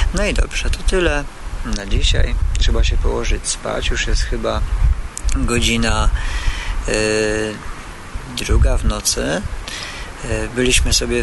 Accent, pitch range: native, 90-125 Hz